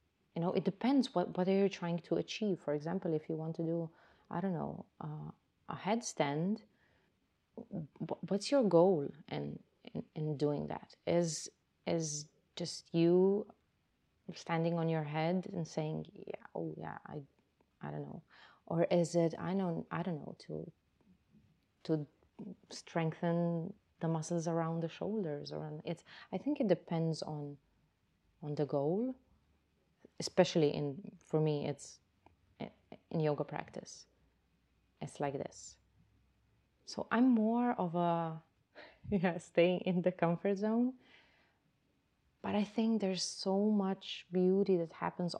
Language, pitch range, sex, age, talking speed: English, 160-195 Hz, female, 30-49, 140 wpm